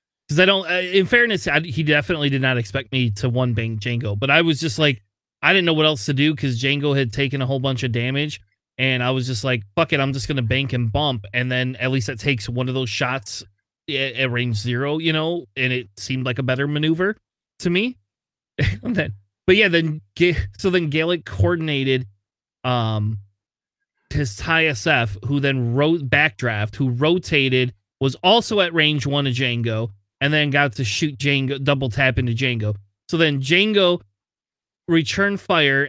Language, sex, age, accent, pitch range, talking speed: English, male, 30-49, American, 120-155 Hz, 190 wpm